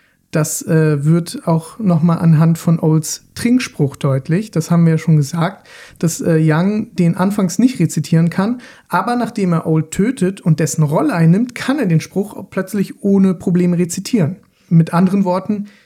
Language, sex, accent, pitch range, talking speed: German, male, German, 160-205 Hz, 165 wpm